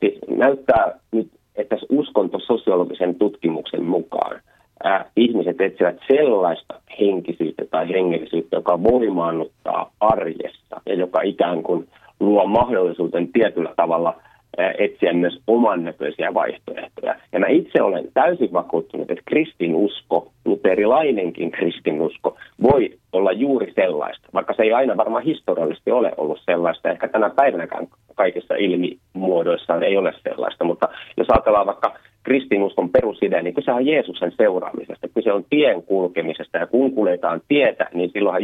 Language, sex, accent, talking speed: Finnish, male, native, 135 wpm